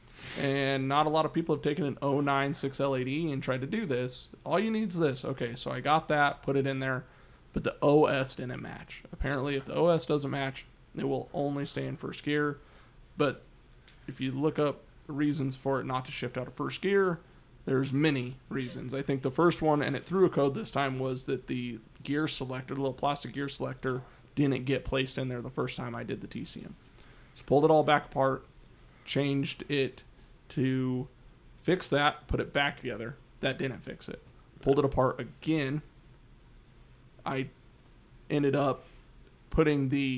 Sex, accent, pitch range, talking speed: male, American, 130-145 Hz, 190 wpm